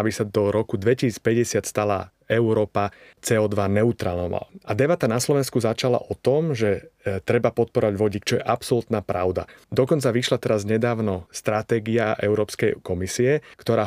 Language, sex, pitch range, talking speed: Slovak, male, 105-125 Hz, 140 wpm